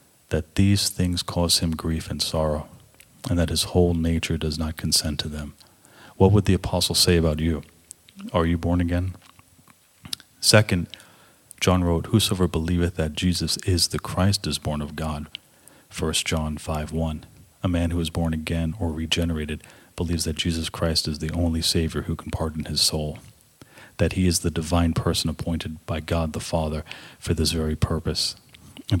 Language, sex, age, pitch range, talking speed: English, male, 40-59, 80-90 Hz, 175 wpm